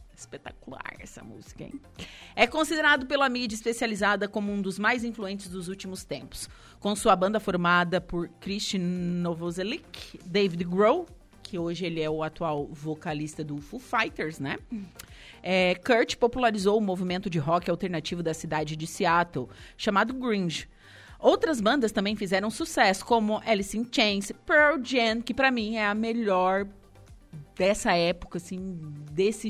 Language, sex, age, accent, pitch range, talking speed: Portuguese, female, 30-49, Brazilian, 170-215 Hz, 145 wpm